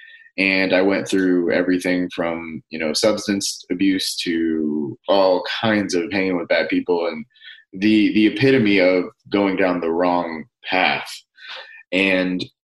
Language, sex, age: English, male, 20-39